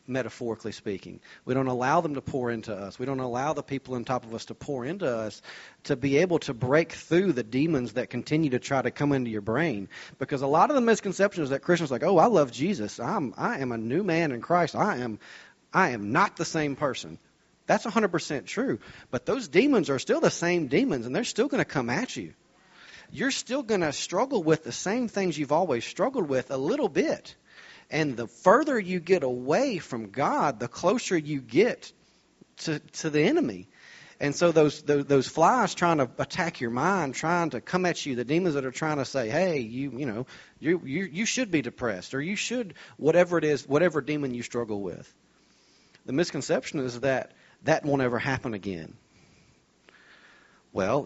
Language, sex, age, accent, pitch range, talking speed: English, male, 40-59, American, 125-170 Hz, 205 wpm